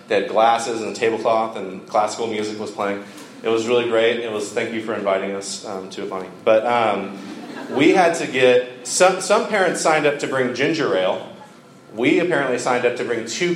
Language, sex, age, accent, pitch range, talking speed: English, male, 30-49, American, 105-135 Hz, 210 wpm